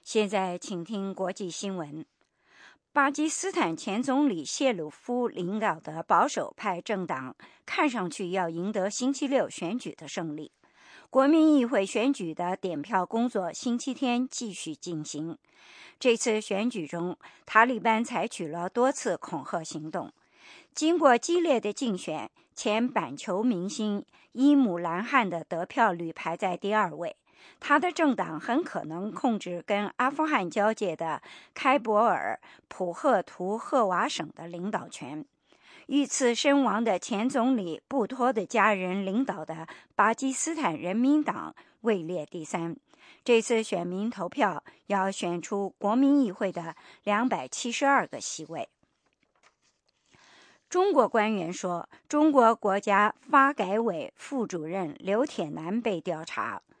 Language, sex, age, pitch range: English, male, 50-69, 180-265 Hz